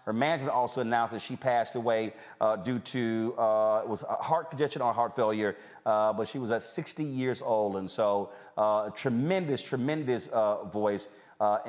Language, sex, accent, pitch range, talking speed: English, male, American, 115-150 Hz, 200 wpm